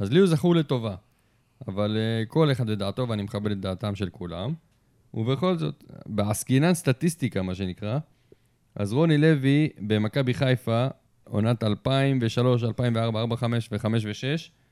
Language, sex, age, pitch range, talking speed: Hebrew, male, 20-39, 105-130 Hz, 125 wpm